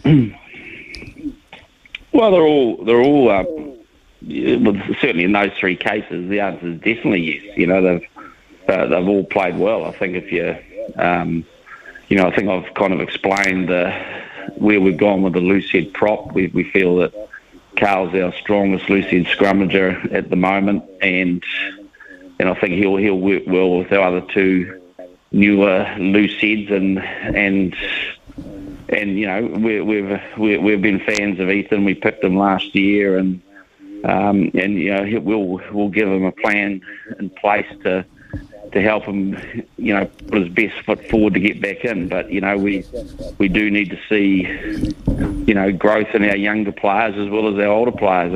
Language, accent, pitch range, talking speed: English, Australian, 95-105 Hz, 175 wpm